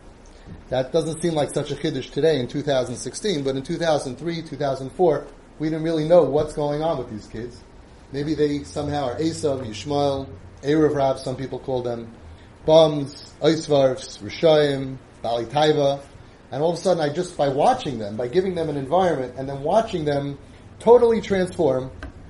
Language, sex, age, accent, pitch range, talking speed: English, male, 30-49, American, 125-160 Hz, 165 wpm